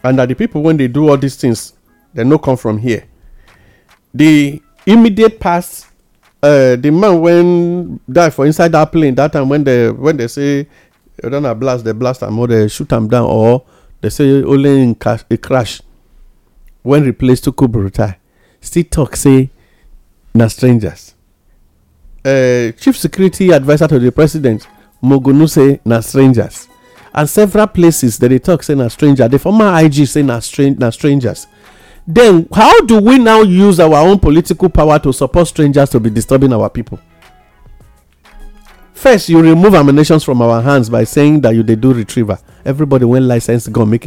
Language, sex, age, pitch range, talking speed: English, male, 50-69, 115-150 Hz, 165 wpm